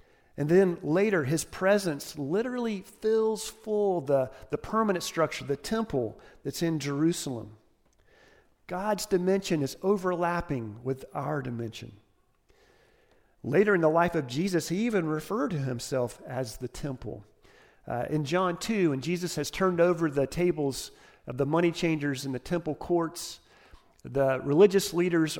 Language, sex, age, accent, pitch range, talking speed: English, male, 40-59, American, 130-180 Hz, 140 wpm